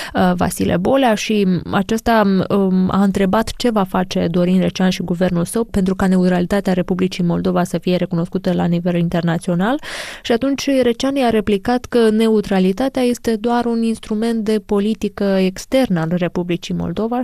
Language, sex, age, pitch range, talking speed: Romanian, female, 20-39, 180-215 Hz, 145 wpm